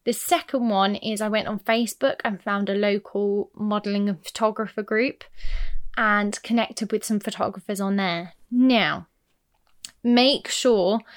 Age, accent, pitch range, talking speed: 20-39, British, 200-230 Hz, 140 wpm